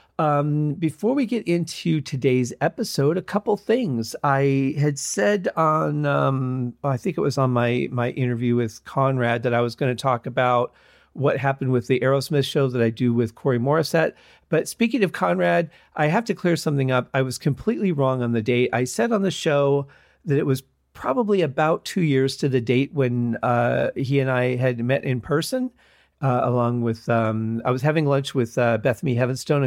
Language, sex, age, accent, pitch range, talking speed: English, male, 40-59, American, 120-150 Hz, 195 wpm